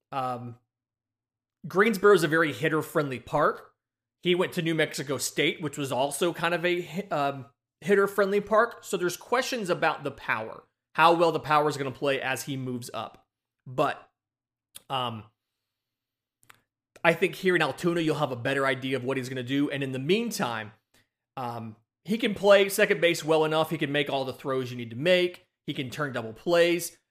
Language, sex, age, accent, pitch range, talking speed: English, male, 30-49, American, 130-165 Hz, 190 wpm